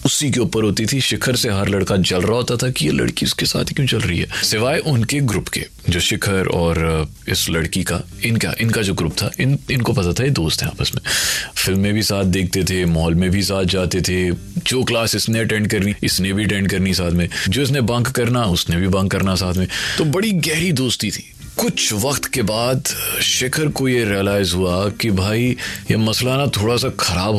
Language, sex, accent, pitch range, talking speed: Hindi, male, native, 95-125 Hz, 130 wpm